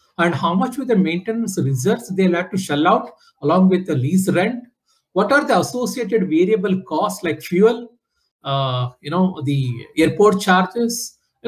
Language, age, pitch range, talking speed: English, 60-79, 150-200 Hz, 165 wpm